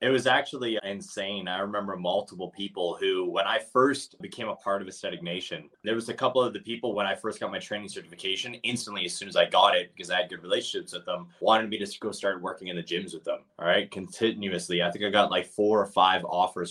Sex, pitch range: male, 90-110 Hz